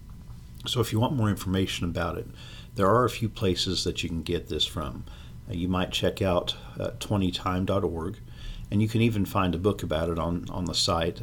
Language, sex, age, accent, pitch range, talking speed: English, male, 50-69, American, 85-105 Hz, 205 wpm